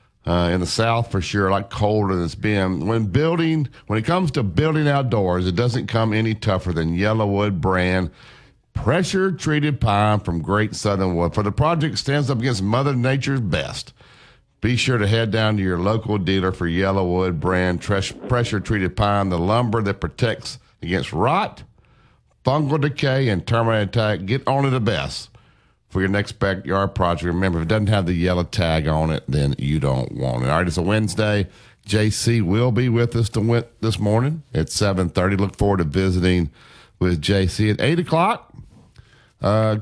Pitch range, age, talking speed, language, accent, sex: 95-120 Hz, 50-69, 180 wpm, English, American, male